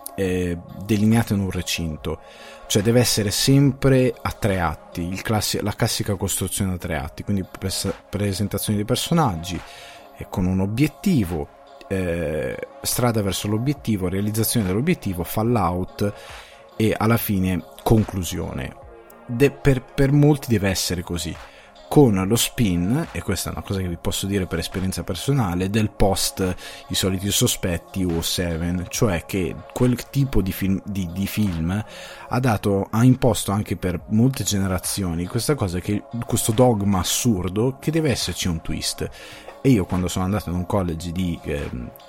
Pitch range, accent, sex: 90-115 Hz, native, male